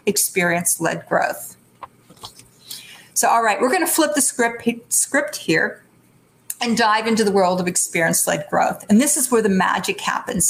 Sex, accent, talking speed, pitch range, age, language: female, American, 155 wpm, 195-245 Hz, 50-69, English